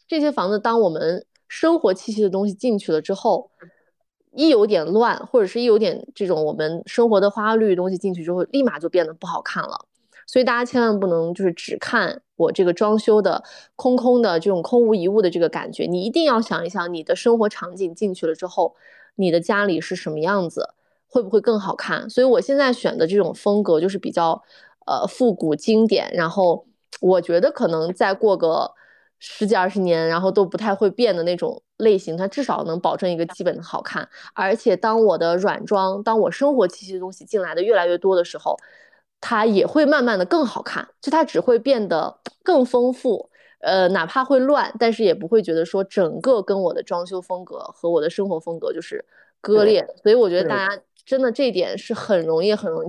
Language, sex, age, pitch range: Chinese, female, 20-39, 180-245 Hz